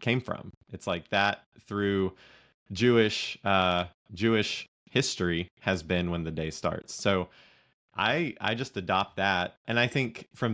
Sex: male